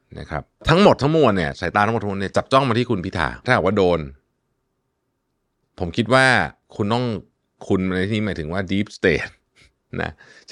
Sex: male